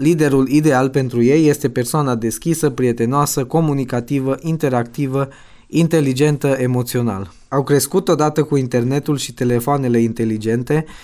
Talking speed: 110 wpm